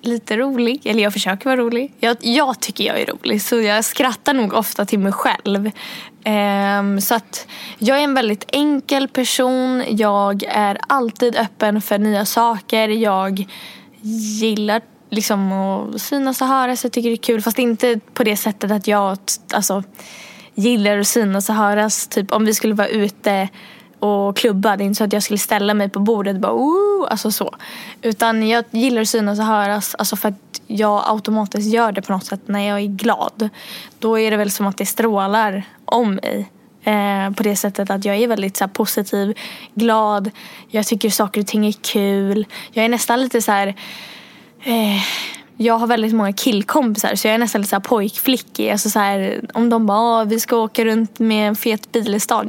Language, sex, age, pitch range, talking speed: Swedish, female, 10-29, 205-235 Hz, 190 wpm